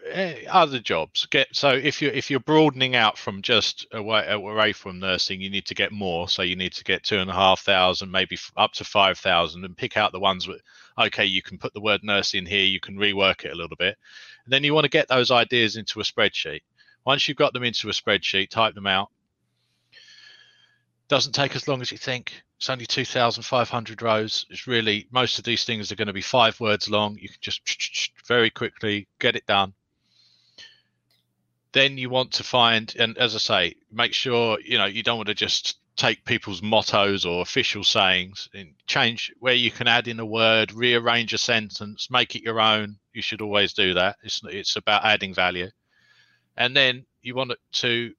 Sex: male